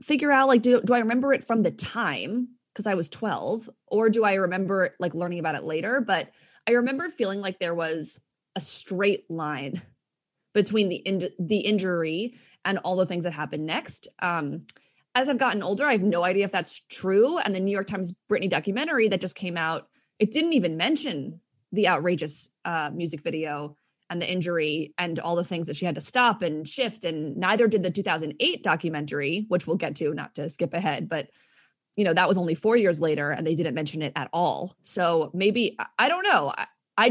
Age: 20-39